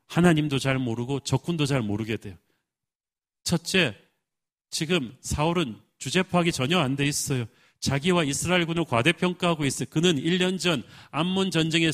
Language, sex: Korean, male